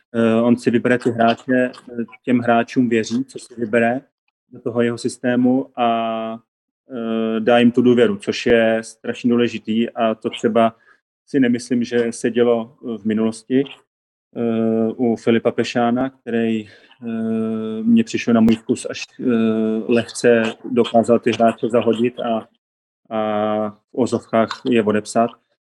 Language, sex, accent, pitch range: Czech, male, native, 110-120 Hz